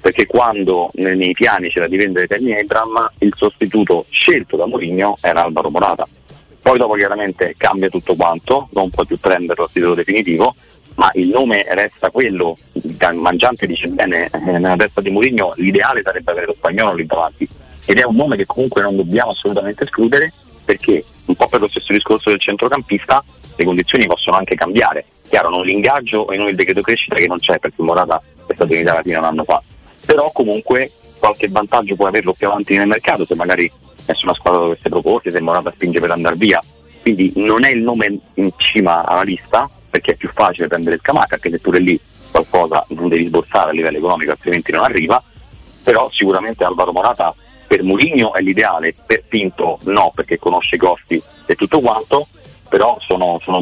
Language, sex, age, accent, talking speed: Italian, male, 40-59, native, 190 wpm